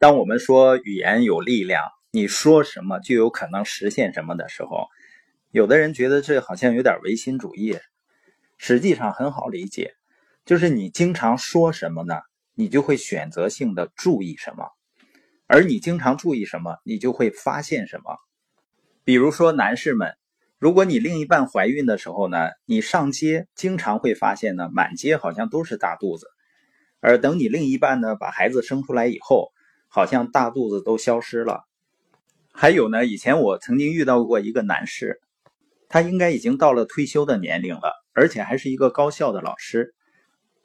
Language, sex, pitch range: Chinese, male, 120-175 Hz